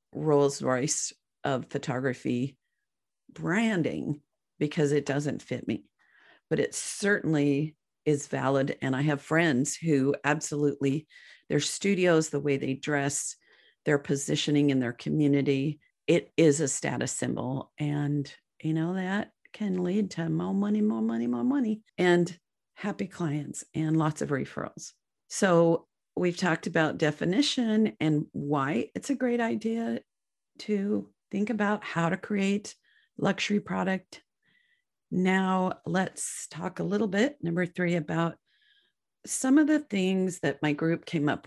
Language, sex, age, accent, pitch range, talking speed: English, female, 50-69, American, 145-205 Hz, 135 wpm